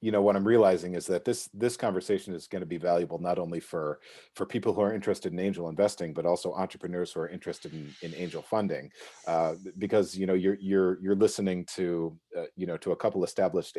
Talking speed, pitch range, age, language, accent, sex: 225 wpm, 90-110 Hz, 40-59, English, American, male